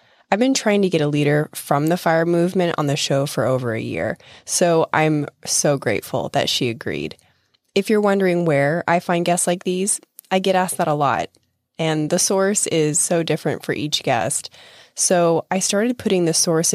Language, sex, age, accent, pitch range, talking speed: English, female, 20-39, American, 145-190 Hz, 195 wpm